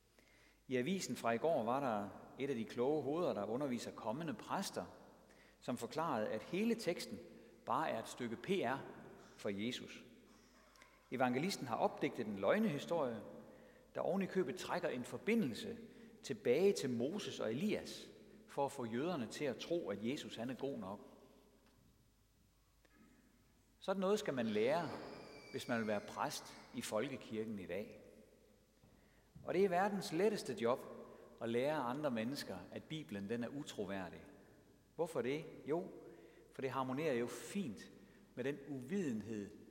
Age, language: 60-79, Danish